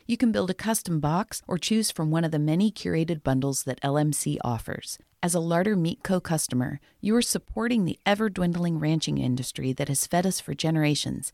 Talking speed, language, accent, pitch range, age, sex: 195 wpm, English, American, 140-185 Hz, 40-59, female